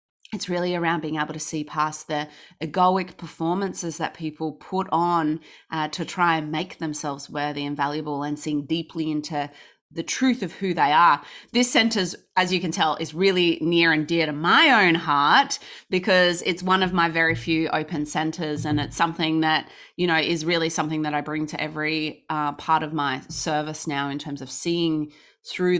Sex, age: female, 20-39